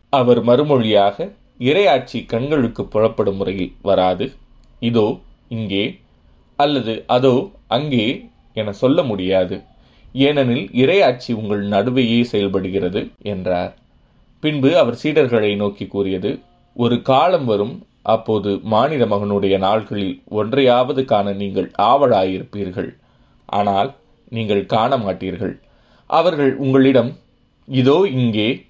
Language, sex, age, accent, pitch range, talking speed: Tamil, male, 20-39, native, 95-120 Hz, 95 wpm